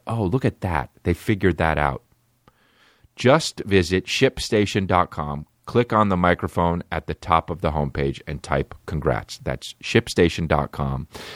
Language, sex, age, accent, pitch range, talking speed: English, male, 40-59, American, 85-120 Hz, 135 wpm